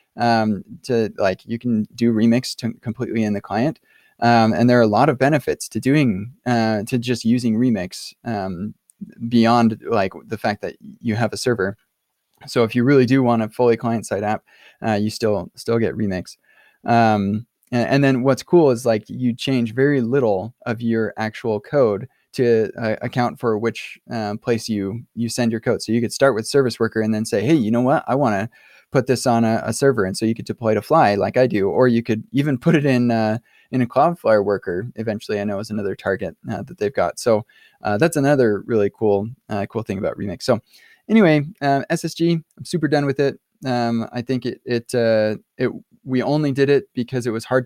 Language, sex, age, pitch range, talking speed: English, male, 20-39, 110-130 Hz, 215 wpm